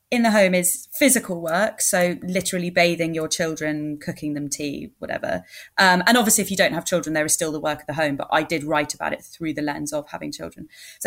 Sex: female